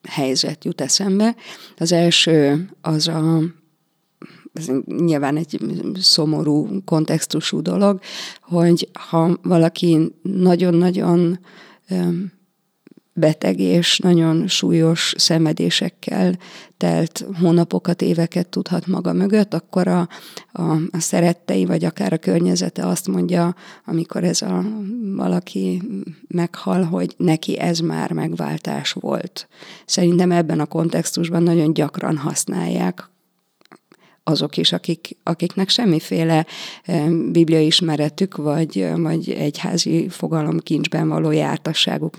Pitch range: 160-185 Hz